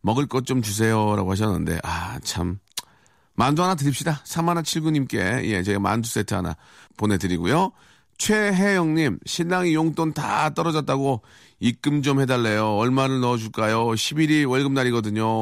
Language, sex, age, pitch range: Korean, male, 40-59, 105-160 Hz